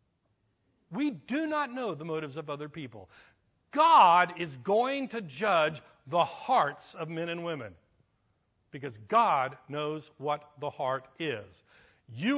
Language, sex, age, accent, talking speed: English, male, 60-79, American, 135 wpm